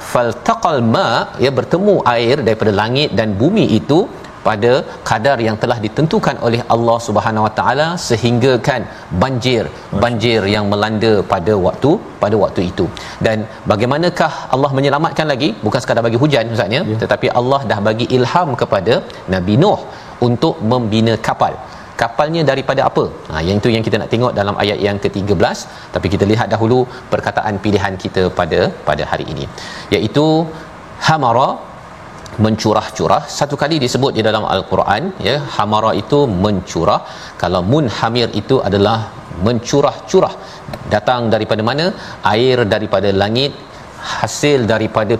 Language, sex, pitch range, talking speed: Malayalam, male, 105-135 Hz, 135 wpm